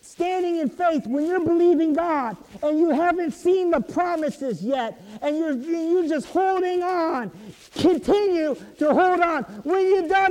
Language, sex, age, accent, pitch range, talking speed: English, male, 50-69, American, 275-345 Hz, 155 wpm